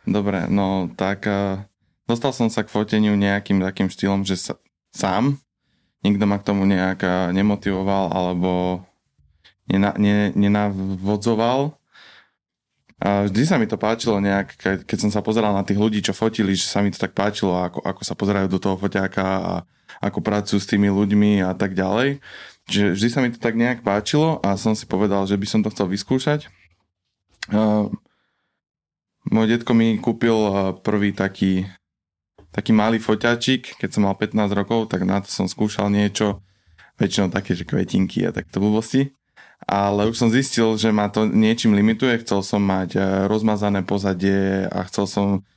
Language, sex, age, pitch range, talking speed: Slovak, male, 20-39, 95-110 Hz, 165 wpm